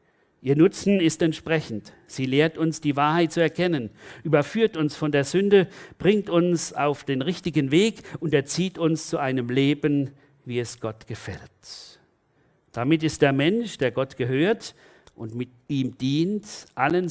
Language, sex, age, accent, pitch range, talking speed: German, male, 50-69, German, 125-165 Hz, 155 wpm